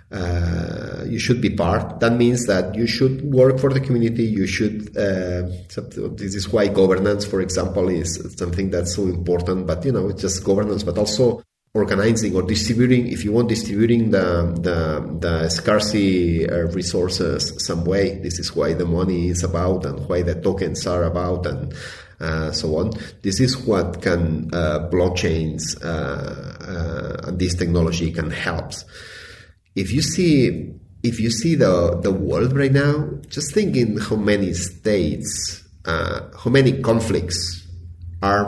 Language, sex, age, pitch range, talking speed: English, male, 30-49, 85-110 Hz, 160 wpm